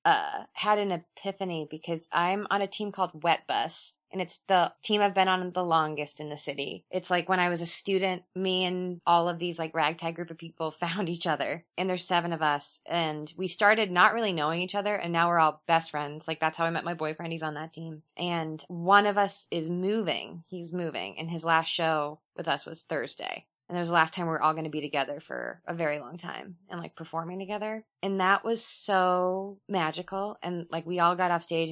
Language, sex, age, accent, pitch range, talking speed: English, female, 20-39, American, 160-195 Hz, 235 wpm